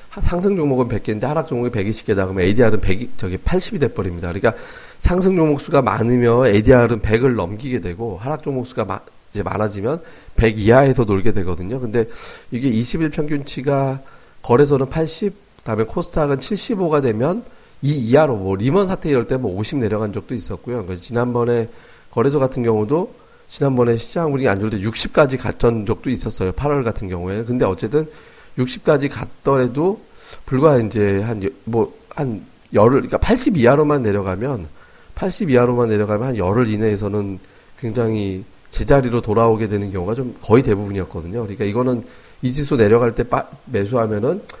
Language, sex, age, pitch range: Korean, male, 30-49, 105-140 Hz